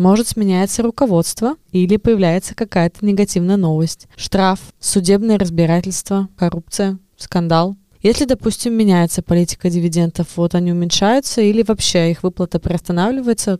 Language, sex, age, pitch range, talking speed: Russian, female, 20-39, 175-215 Hz, 115 wpm